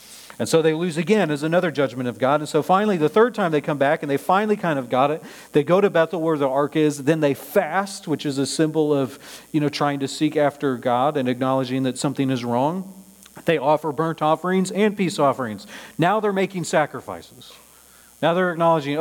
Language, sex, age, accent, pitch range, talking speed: English, male, 40-59, American, 130-170 Hz, 220 wpm